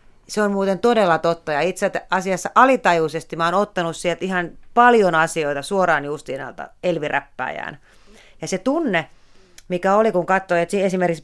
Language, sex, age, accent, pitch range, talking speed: Finnish, female, 30-49, native, 155-195 Hz, 150 wpm